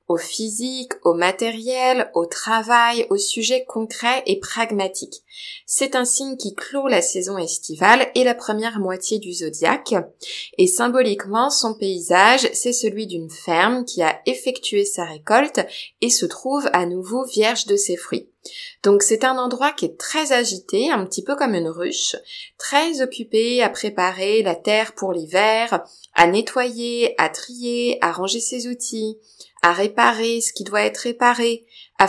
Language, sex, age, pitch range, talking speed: French, female, 20-39, 190-250 Hz, 160 wpm